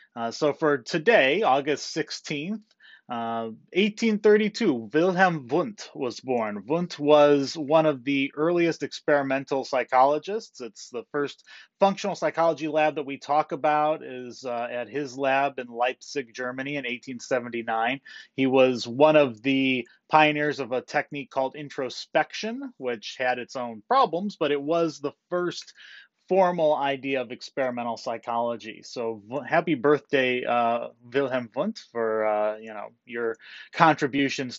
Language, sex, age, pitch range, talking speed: English, male, 30-49, 120-155 Hz, 135 wpm